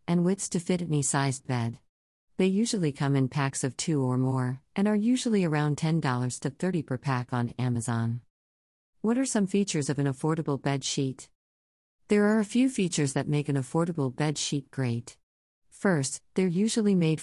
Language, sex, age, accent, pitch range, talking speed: English, female, 50-69, American, 130-165 Hz, 180 wpm